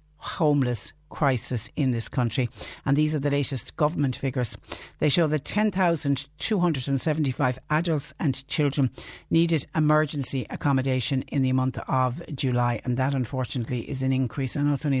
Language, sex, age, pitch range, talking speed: English, female, 60-79, 125-145 Hz, 145 wpm